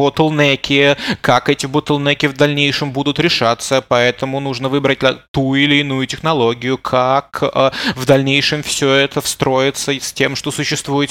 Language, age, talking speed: Russian, 20-39, 135 wpm